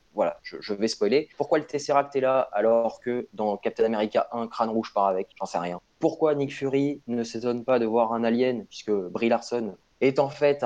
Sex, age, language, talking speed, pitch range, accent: male, 20-39, French, 220 wpm, 110-140 Hz, French